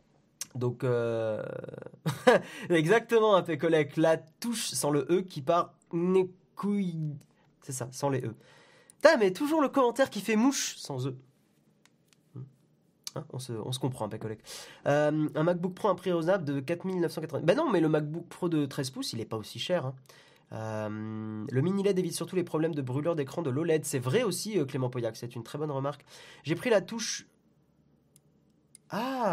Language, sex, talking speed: French, male, 180 wpm